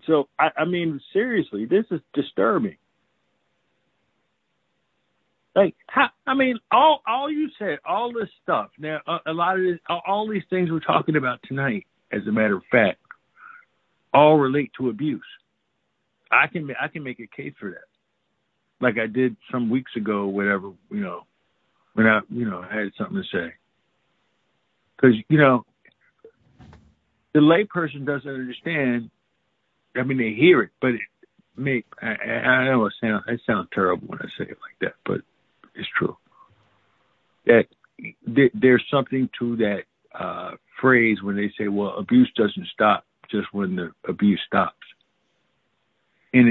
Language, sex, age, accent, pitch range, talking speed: English, male, 50-69, American, 110-165 Hz, 155 wpm